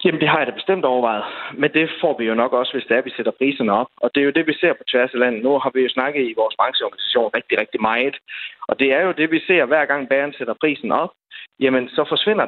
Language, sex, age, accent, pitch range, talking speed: Danish, male, 30-49, native, 125-155 Hz, 295 wpm